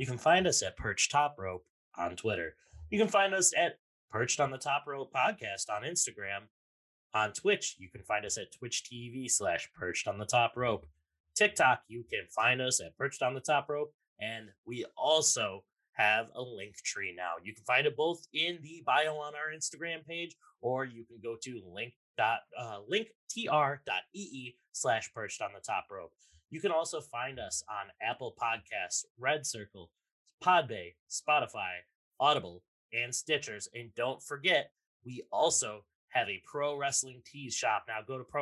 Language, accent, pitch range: English, American, 115-155 Hz